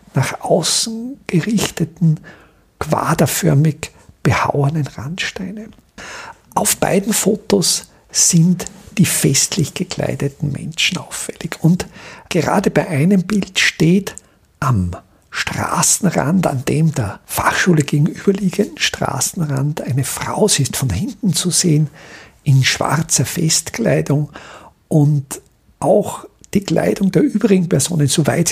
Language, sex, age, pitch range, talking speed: German, male, 50-69, 150-195 Hz, 100 wpm